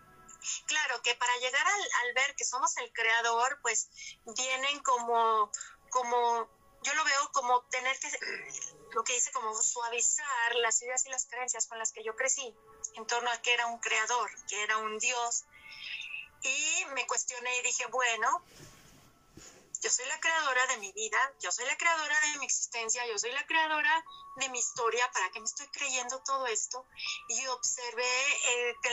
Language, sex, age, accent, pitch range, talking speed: Spanish, female, 30-49, Mexican, 235-270 Hz, 175 wpm